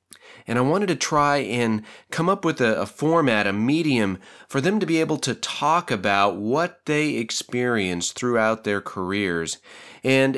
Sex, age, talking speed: male, 30-49, 170 wpm